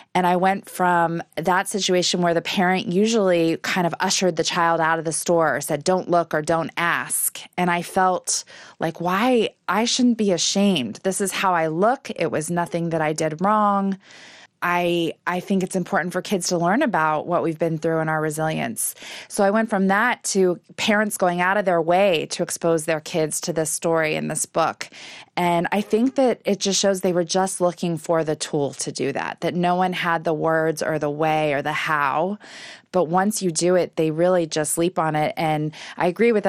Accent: American